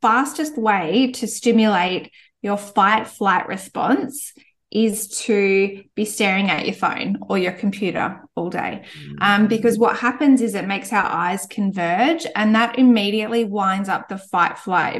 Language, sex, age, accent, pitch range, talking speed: English, female, 20-39, Australian, 190-230 Hz, 145 wpm